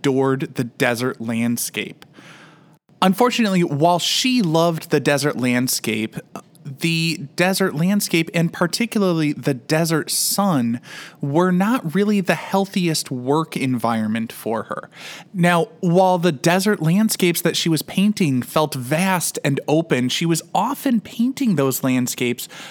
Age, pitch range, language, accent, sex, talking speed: 20-39, 135-190 Hz, English, American, male, 125 wpm